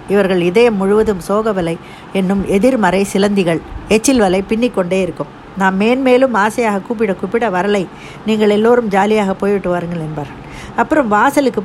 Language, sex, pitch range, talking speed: Tamil, female, 185-240 Hz, 135 wpm